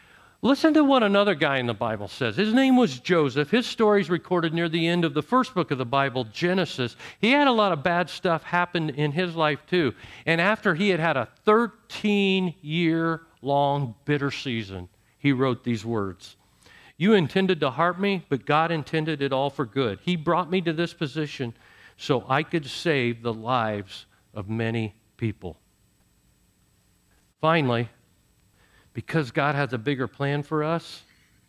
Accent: American